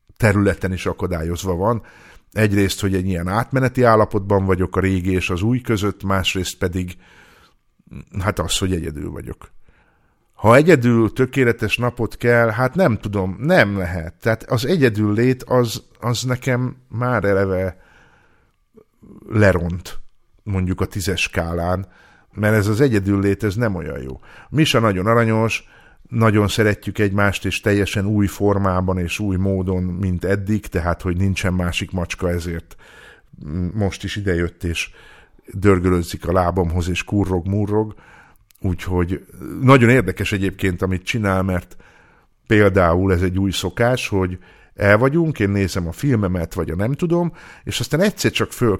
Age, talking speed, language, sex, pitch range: 50-69, 140 wpm, Hungarian, male, 95-115 Hz